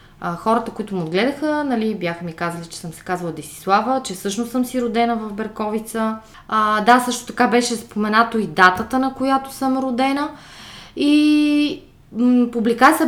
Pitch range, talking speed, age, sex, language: 200-260 Hz, 160 wpm, 20-39, female, Bulgarian